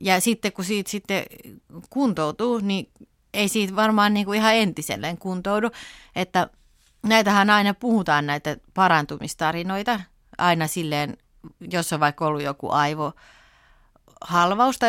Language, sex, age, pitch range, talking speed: Finnish, female, 30-49, 165-215 Hz, 115 wpm